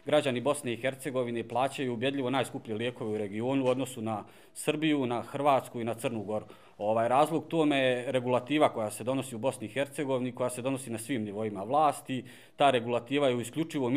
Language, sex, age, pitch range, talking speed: Croatian, male, 40-59, 110-135 Hz, 185 wpm